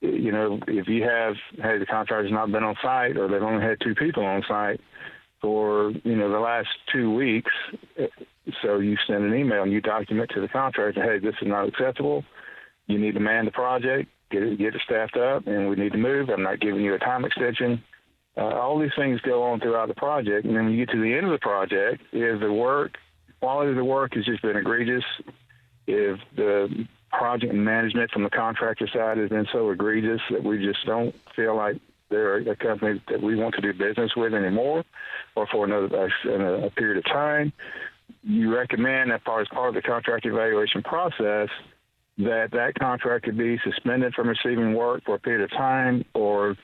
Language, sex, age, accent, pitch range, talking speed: English, male, 50-69, American, 105-120 Hz, 205 wpm